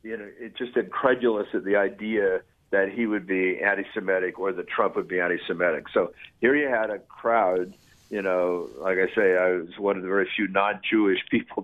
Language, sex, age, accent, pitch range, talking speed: English, male, 60-79, American, 95-120 Hz, 200 wpm